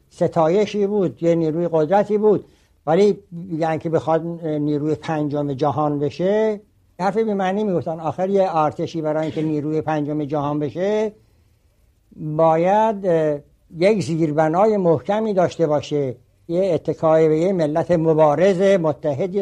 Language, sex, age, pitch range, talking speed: Persian, male, 60-79, 150-180 Hz, 125 wpm